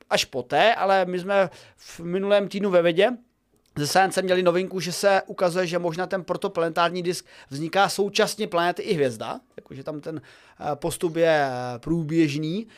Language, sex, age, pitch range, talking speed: Czech, male, 30-49, 160-205 Hz, 155 wpm